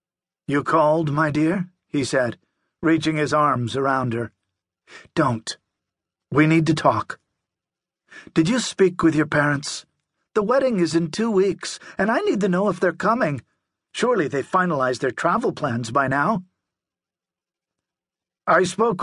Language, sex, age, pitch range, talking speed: English, male, 50-69, 145-190 Hz, 145 wpm